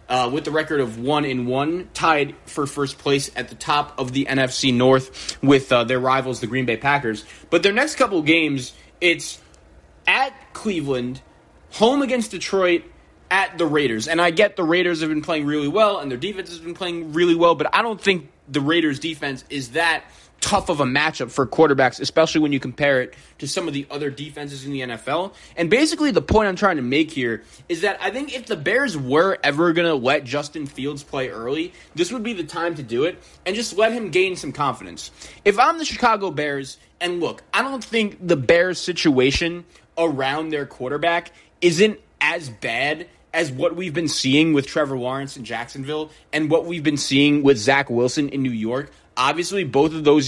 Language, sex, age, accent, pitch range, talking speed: English, male, 20-39, American, 135-175 Hz, 205 wpm